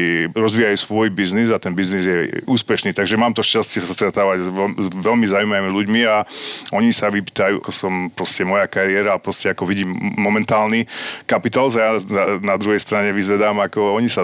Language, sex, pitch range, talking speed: Slovak, male, 90-105 Hz, 175 wpm